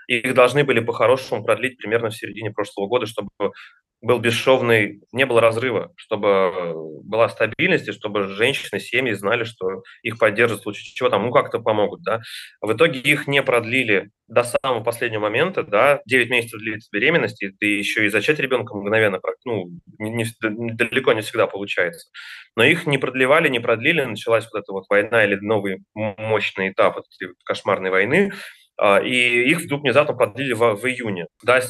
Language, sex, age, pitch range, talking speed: Russian, male, 20-39, 105-130 Hz, 170 wpm